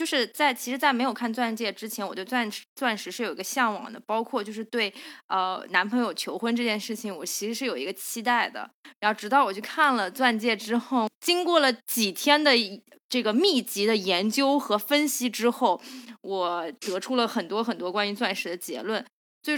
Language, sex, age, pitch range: Chinese, female, 20-39, 210-265 Hz